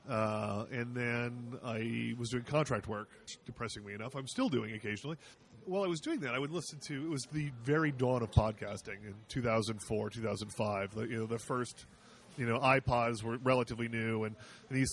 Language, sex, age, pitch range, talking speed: English, male, 30-49, 115-150 Hz, 190 wpm